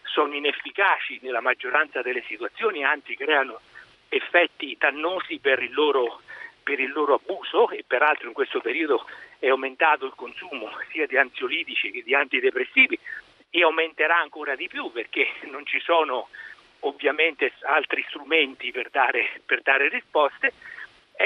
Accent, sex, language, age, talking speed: native, male, Italian, 60-79, 140 wpm